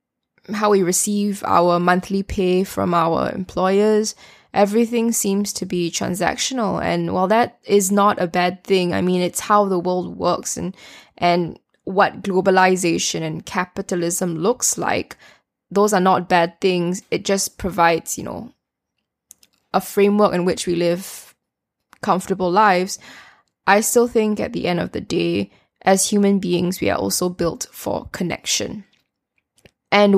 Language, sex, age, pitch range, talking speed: English, female, 10-29, 180-205 Hz, 145 wpm